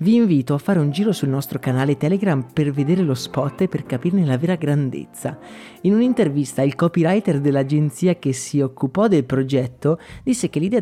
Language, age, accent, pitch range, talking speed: Italian, 30-49, native, 145-205 Hz, 185 wpm